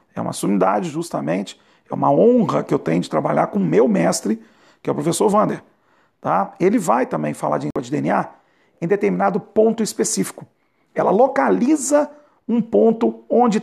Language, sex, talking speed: Portuguese, male, 165 wpm